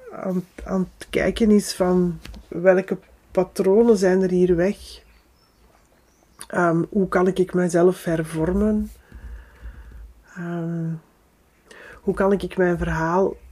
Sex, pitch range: female, 165-190 Hz